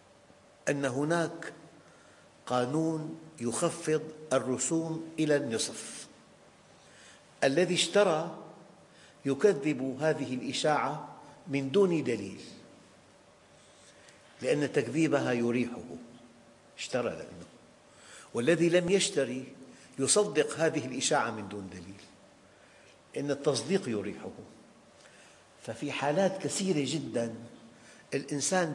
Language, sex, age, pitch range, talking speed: English, male, 50-69, 130-165 Hz, 75 wpm